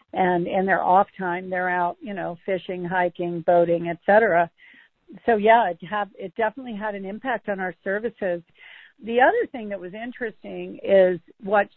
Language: English